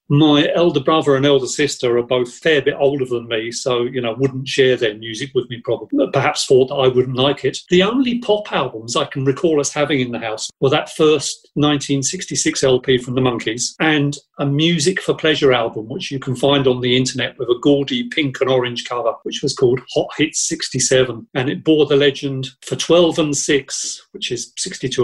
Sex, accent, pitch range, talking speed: male, British, 125-160 Hz, 210 wpm